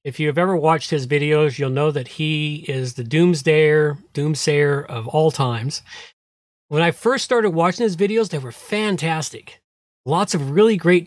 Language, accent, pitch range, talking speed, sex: English, American, 140-195 Hz, 170 wpm, male